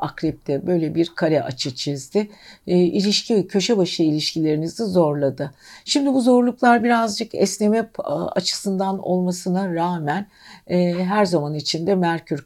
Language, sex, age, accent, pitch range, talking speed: Turkish, female, 60-79, native, 155-200 Hz, 110 wpm